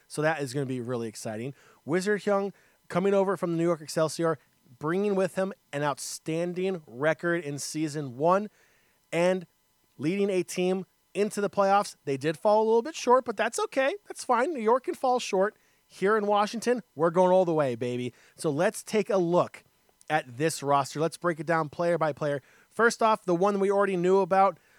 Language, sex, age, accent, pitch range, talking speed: English, male, 30-49, American, 155-195 Hz, 200 wpm